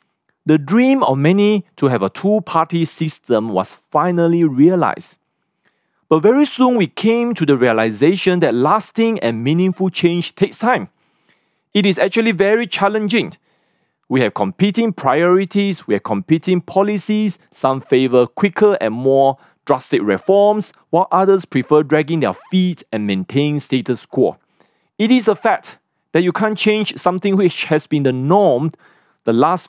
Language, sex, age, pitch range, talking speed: English, male, 40-59, 130-195 Hz, 150 wpm